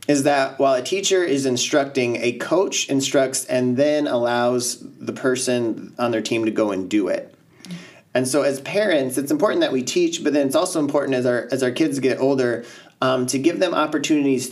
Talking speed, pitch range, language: 205 wpm, 120-145 Hz, English